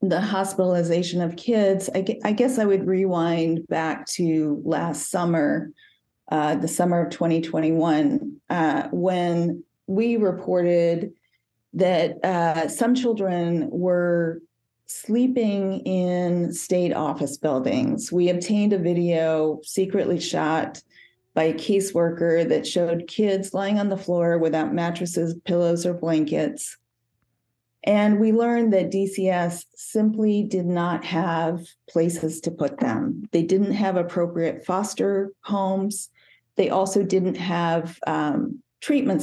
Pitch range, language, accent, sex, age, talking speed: 165-195 Hz, English, American, female, 40-59, 120 wpm